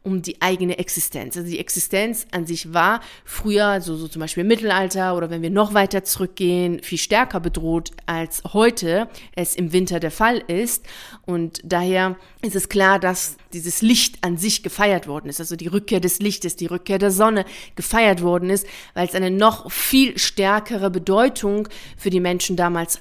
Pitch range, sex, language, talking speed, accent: 170-200 Hz, female, German, 185 wpm, German